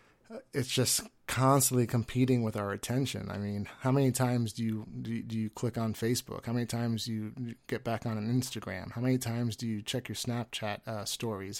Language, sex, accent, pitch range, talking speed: English, male, American, 115-135 Hz, 205 wpm